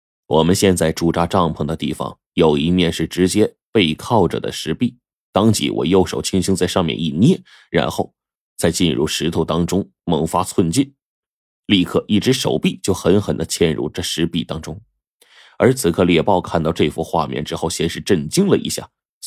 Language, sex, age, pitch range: Chinese, male, 20-39, 80-95 Hz